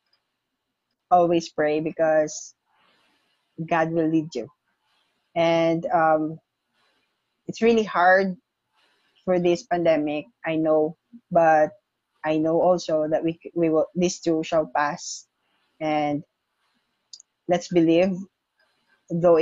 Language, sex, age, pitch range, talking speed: English, female, 20-39, 155-175 Hz, 100 wpm